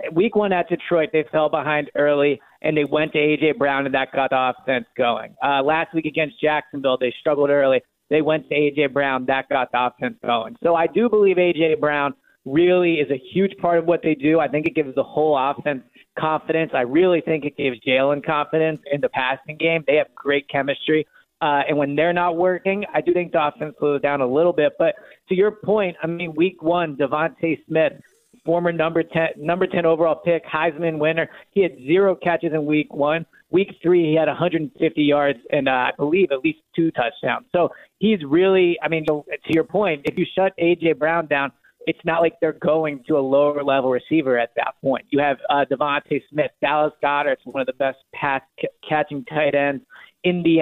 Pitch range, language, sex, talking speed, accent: 145-170 Hz, English, male, 210 wpm, American